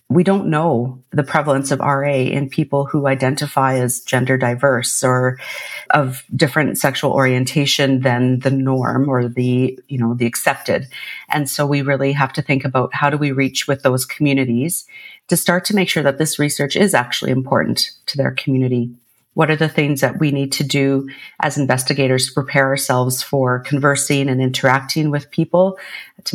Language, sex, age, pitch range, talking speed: English, female, 40-59, 130-155 Hz, 180 wpm